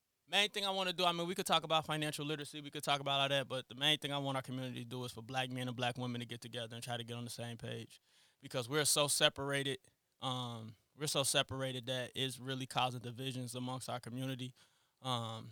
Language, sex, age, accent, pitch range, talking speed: English, male, 20-39, American, 125-145 Hz, 250 wpm